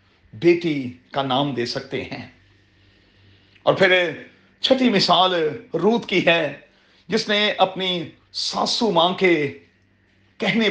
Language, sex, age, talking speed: Urdu, male, 40-59, 110 wpm